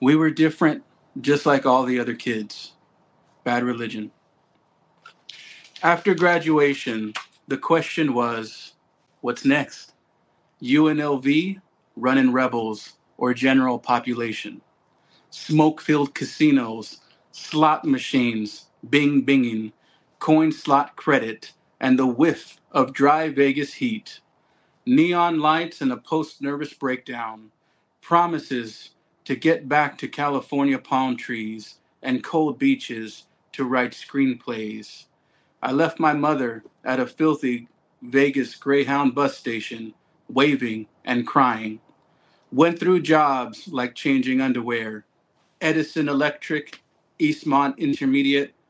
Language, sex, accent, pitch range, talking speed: English, male, American, 125-160 Hz, 100 wpm